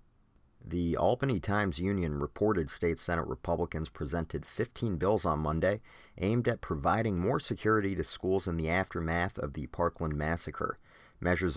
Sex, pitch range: male, 80-100 Hz